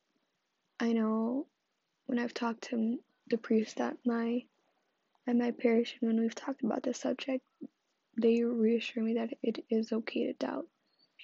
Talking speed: 160 wpm